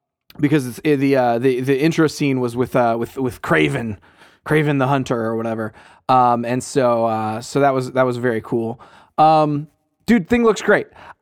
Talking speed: 195 wpm